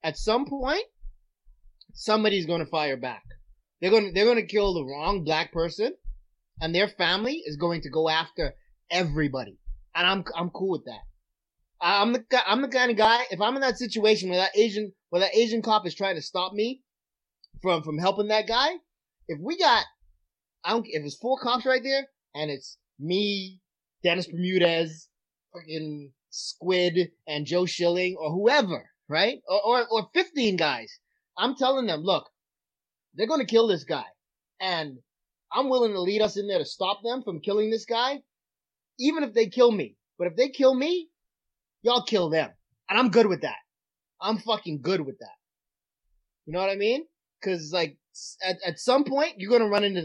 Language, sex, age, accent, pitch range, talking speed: English, male, 30-49, American, 160-230 Hz, 185 wpm